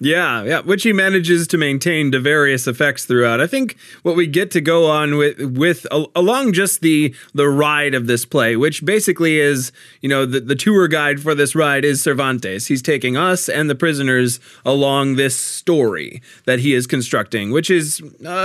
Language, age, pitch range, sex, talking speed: English, 20-39, 130-170 Hz, male, 190 wpm